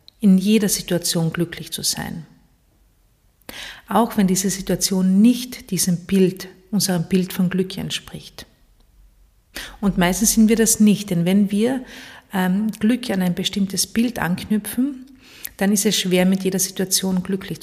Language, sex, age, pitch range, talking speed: German, female, 50-69, 175-210 Hz, 140 wpm